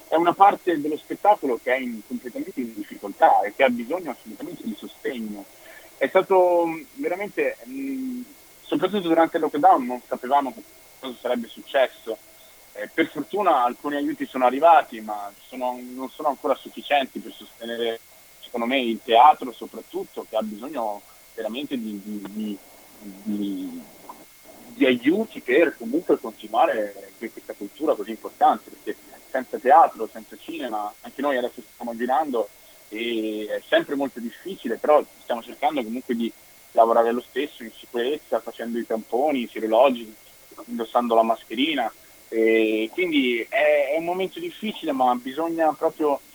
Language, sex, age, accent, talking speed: Italian, male, 30-49, native, 135 wpm